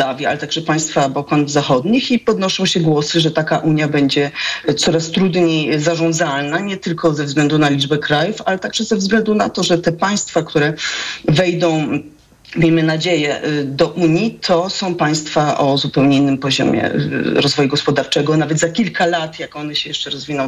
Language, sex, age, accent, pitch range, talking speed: Polish, female, 40-59, native, 145-170 Hz, 165 wpm